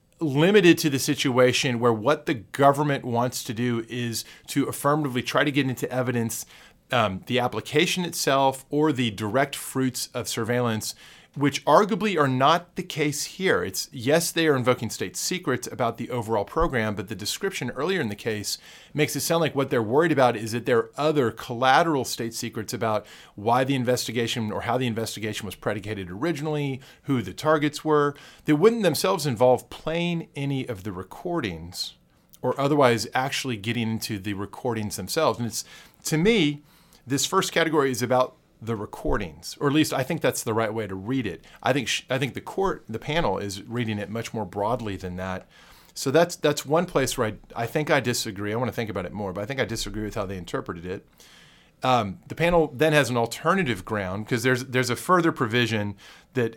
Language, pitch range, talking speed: English, 115-150 Hz, 195 wpm